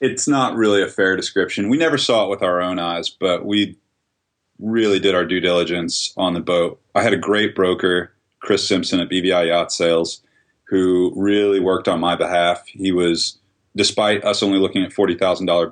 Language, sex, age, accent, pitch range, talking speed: English, male, 30-49, American, 85-100 Hz, 195 wpm